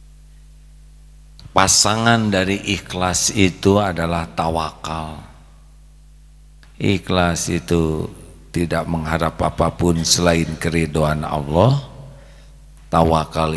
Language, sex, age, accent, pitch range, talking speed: English, male, 50-69, Indonesian, 85-110 Hz, 65 wpm